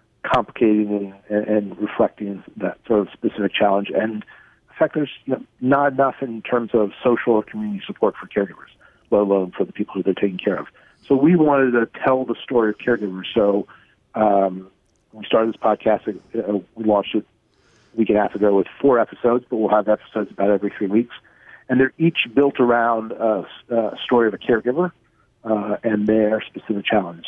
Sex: male